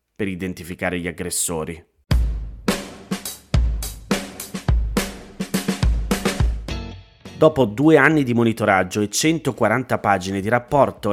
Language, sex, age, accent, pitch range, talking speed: Italian, male, 30-49, native, 90-115 Hz, 70 wpm